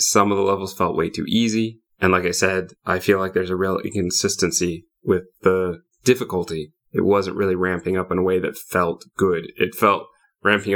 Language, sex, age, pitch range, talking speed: English, male, 20-39, 95-110 Hz, 200 wpm